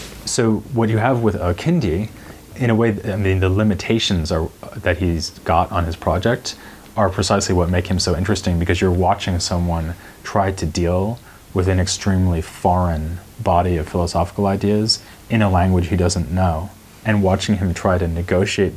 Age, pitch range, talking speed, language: 30-49, 85-100 Hz, 170 wpm, English